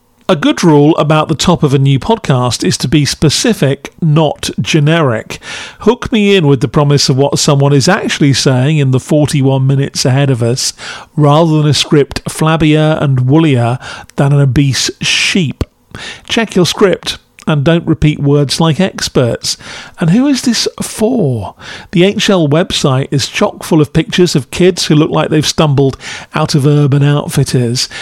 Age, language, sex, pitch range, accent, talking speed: 40-59, English, male, 135-165 Hz, British, 170 wpm